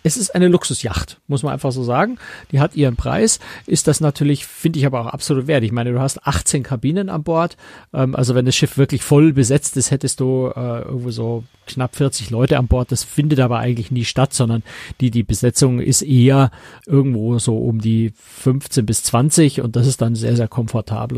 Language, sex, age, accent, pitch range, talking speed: German, male, 50-69, German, 120-145 Hz, 215 wpm